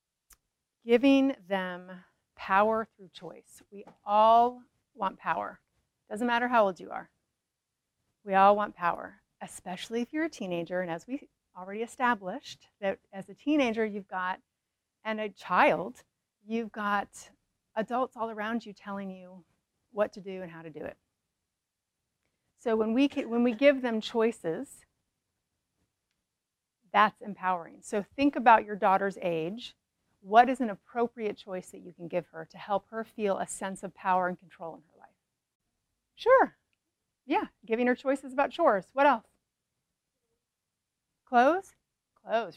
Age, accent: 40-59, American